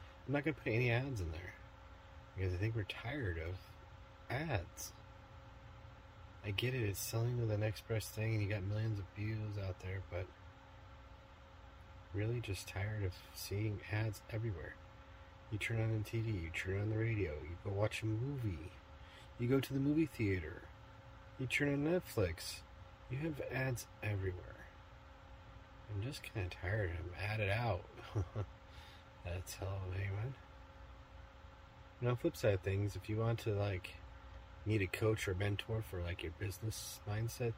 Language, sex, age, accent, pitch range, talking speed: English, male, 30-49, American, 90-110 Hz, 165 wpm